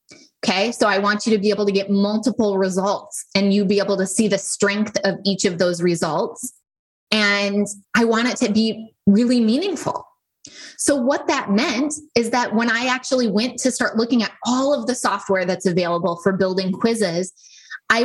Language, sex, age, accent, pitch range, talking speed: English, female, 20-39, American, 200-250 Hz, 190 wpm